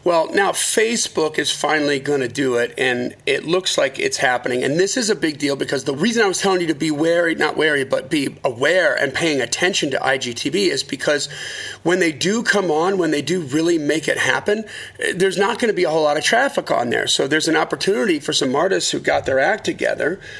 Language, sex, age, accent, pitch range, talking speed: English, male, 40-59, American, 135-165 Hz, 230 wpm